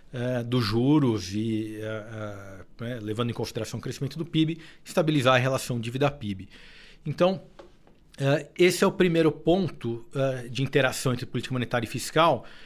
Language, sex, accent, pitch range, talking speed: Portuguese, male, Brazilian, 120-155 Hz, 130 wpm